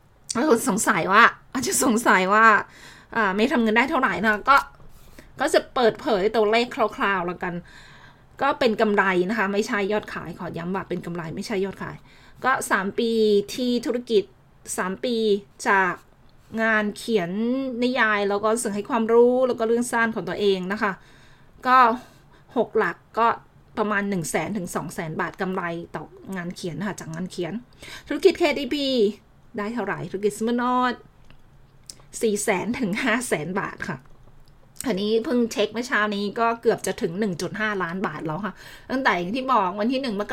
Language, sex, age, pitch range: Thai, female, 20-39, 190-230 Hz